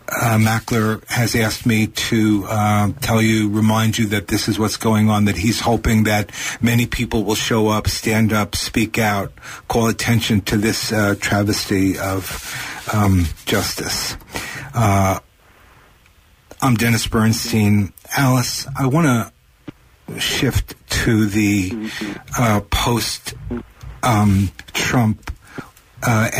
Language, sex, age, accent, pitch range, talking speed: English, male, 50-69, American, 105-120 Hz, 125 wpm